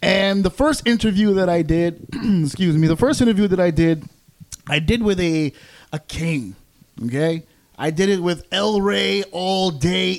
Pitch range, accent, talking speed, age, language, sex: 165-210 Hz, American, 175 wpm, 30-49, English, male